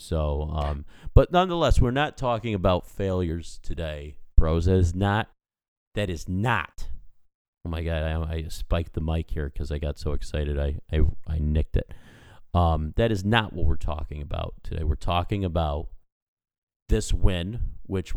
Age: 40-59